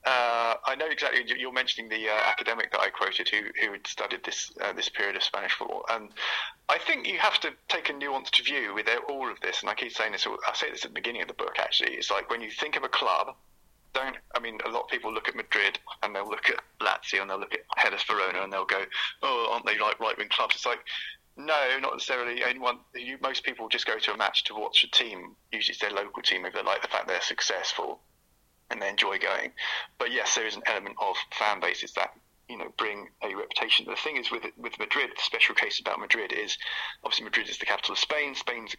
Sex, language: male, English